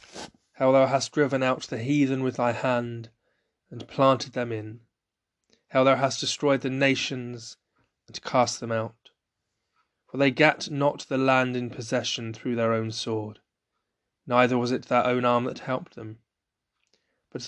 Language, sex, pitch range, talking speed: English, male, 115-135 Hz, 160 wpm